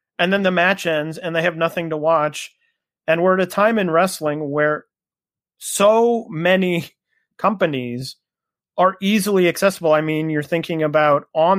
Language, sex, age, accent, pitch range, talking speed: English, male, 30-49, American, 150-195 Hz, 160 wpm